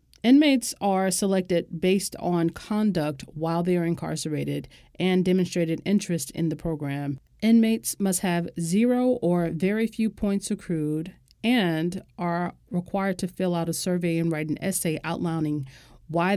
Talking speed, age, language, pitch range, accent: 145 wpm, 40-59, English, 155-190 Hz, American